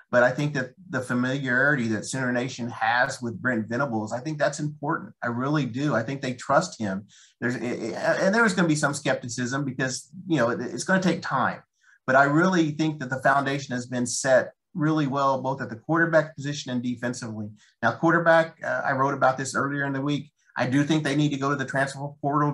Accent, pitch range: American, 125-150 Hz